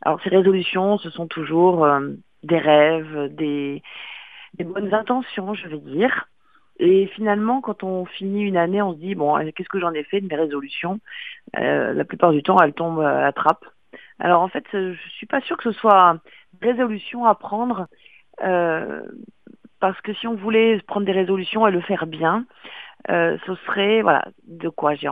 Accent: French